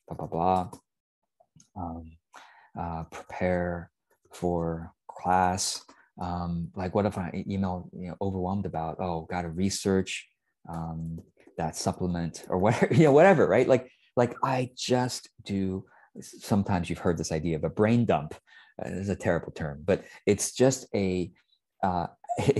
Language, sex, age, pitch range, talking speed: English, male, 20-39, 90-135 Hz, 145 wpm